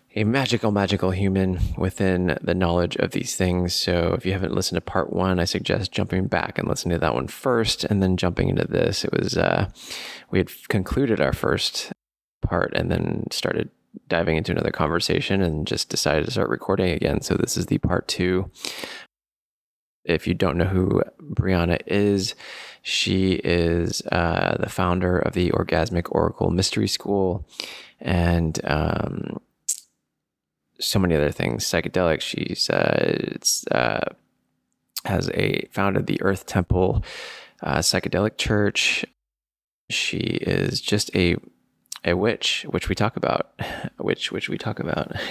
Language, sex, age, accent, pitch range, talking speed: English, male, 20-39, American, 85-100 Hz, 150 wpm